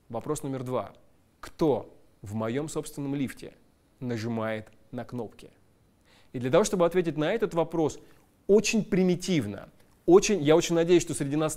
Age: 20-39